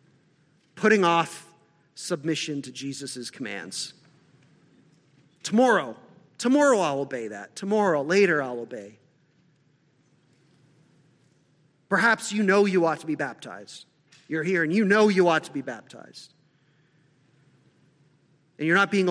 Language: English